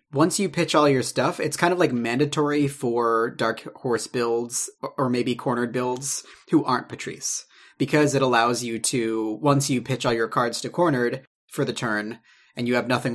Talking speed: 190 wpm